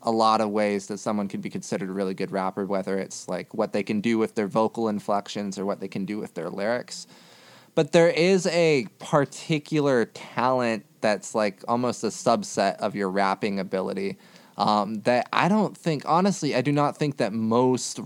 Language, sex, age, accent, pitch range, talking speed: English, male, 20-39, American, 100-125 Hz, 195 wpm